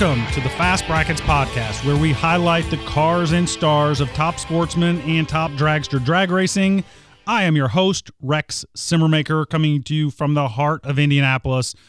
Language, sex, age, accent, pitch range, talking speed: English, male, 30-49, American, 135-165 Hz, 175 wpm